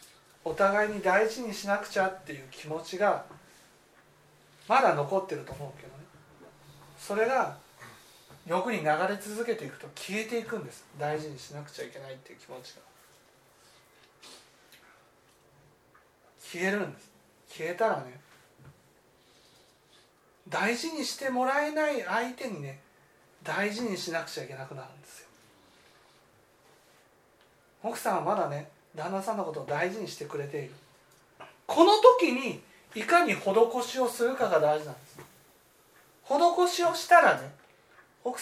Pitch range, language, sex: 160-250 Hz, Japanese, male